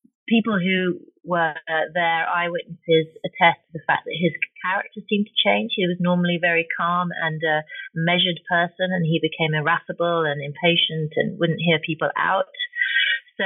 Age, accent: 30-49, British